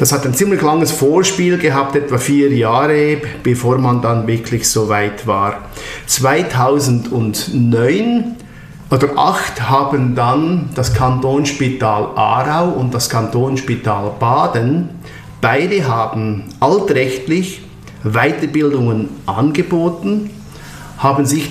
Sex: male